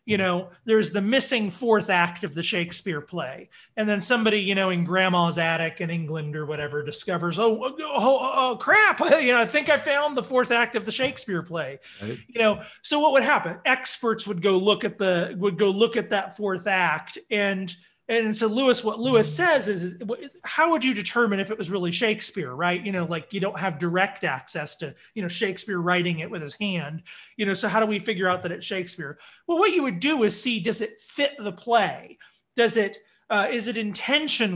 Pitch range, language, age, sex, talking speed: 180-240 Hz, English, 30-49, male, 215 wpm